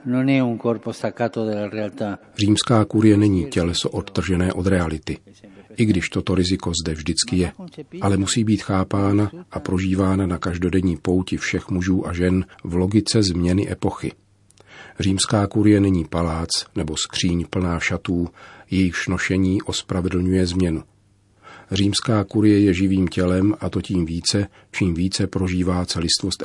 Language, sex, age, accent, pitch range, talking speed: Czech, male, 40-59, native, 90-105 Hz, 125 wpm